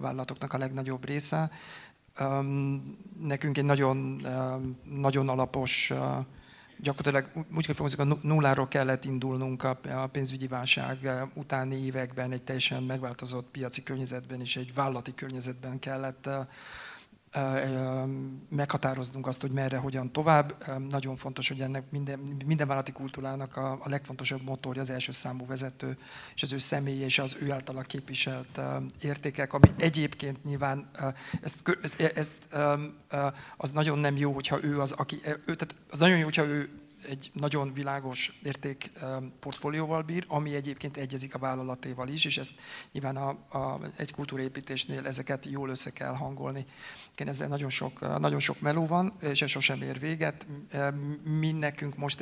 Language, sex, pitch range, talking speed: Hungarian, male, 130-145 Hz, 140 wpm